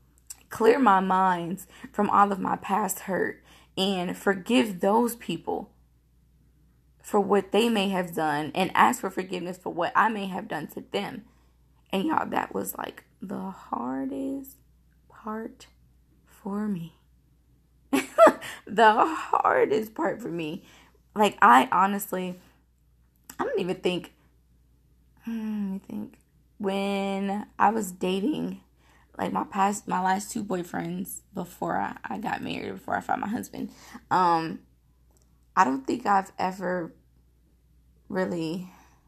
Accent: American